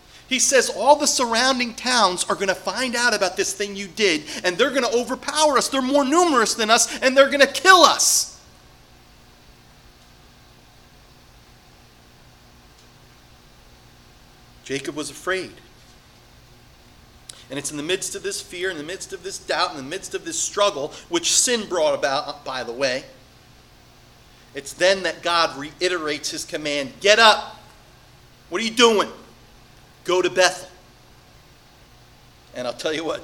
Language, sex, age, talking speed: English, male, 40-59, 150 wpm